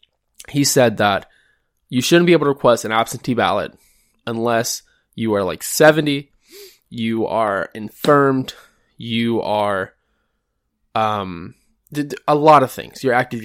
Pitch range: 115-160 Hz